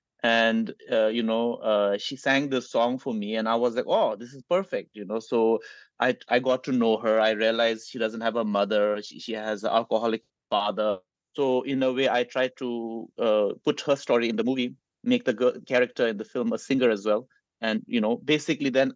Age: 30-49